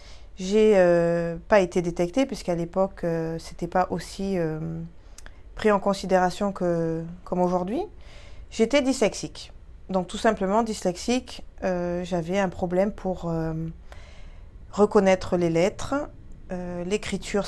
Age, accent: 20-39, French